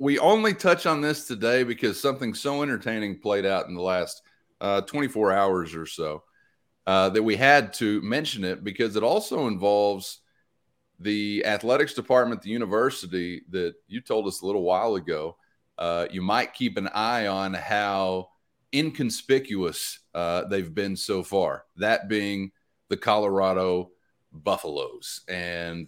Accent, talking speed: American, 150 wpm